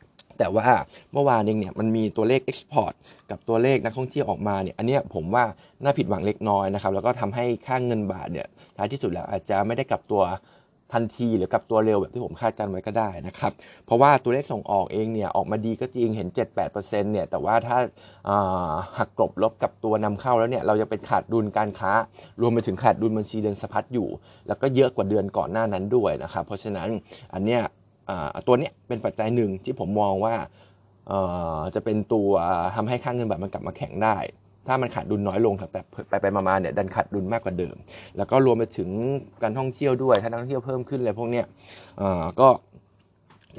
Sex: male